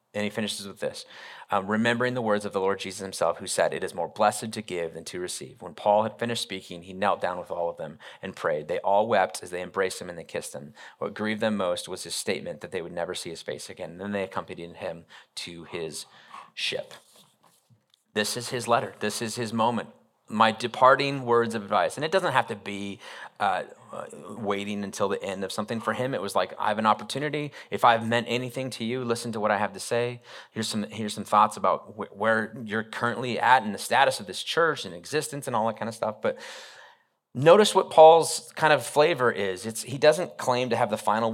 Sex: male